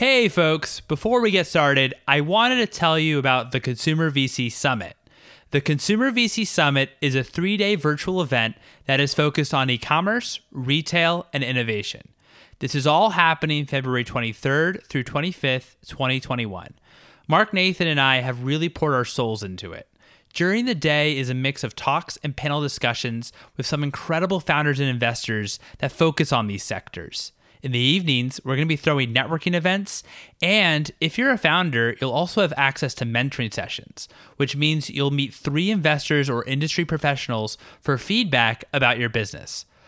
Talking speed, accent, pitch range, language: 165 wpm, American, 130-165 Hz, English